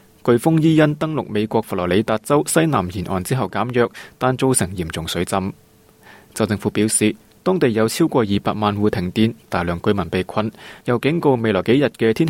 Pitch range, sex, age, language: 100-125 Hz, male, 20-39, Chinese